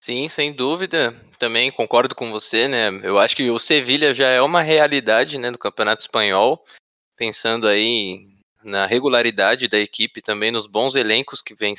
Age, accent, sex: 20-39, Brazilian, male